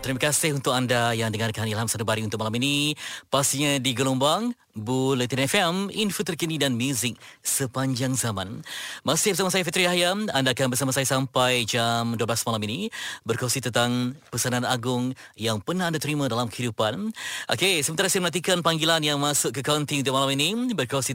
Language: Malay